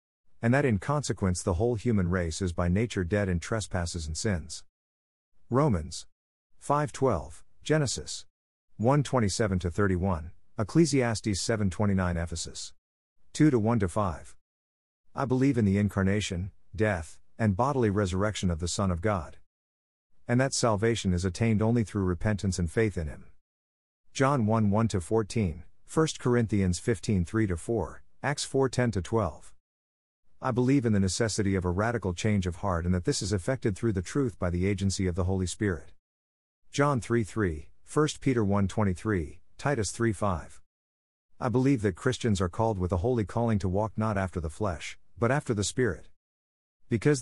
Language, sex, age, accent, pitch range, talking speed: English, male, 50-69, American, 90-115 Hz, 150 wpm